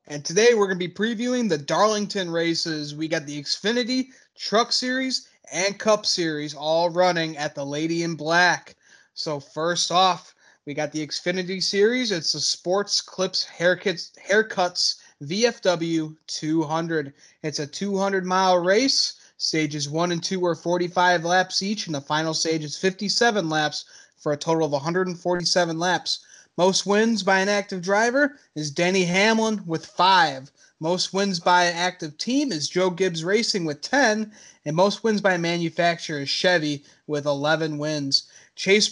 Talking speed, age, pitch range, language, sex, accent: 155 wpm, 20-39, 155-200 Hz, English, male, American